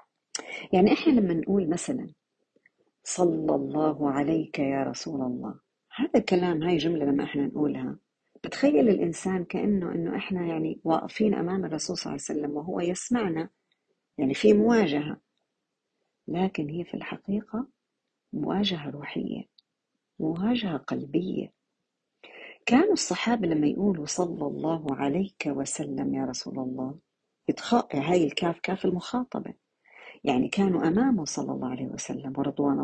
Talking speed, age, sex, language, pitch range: 125 wpm, 50-69, female, Arabic, 150-215 Hz